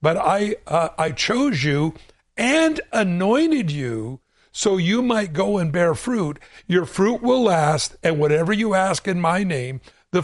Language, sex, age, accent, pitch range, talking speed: English, male, 60-79, American, 155-205 Hz, 160 wpm